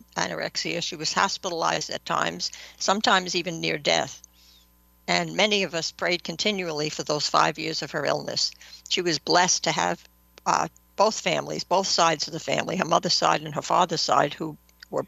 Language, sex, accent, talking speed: English, female, American, 180 wpm